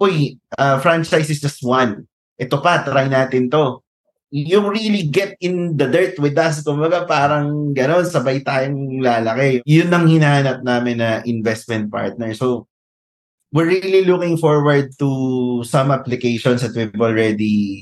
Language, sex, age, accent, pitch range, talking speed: Filipino, male, 20-39, native, 115-145 Hz, 150 wpm